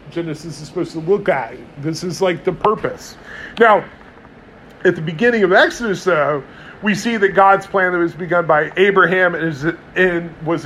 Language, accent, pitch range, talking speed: English, American, 160-200 Hz, 170 wpm